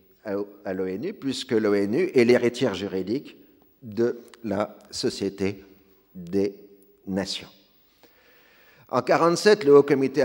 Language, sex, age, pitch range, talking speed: French, male, 50-69, 95-125 Hz, 100 wpm